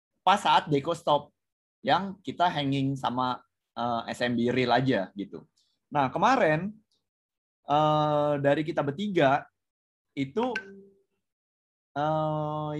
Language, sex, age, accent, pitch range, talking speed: Indonesian, male, 20-39, native, 140-180 Hz, 100 wpm